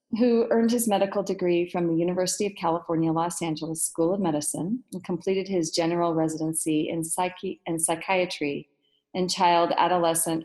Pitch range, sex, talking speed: 160-205 Hz, female, 150 wpm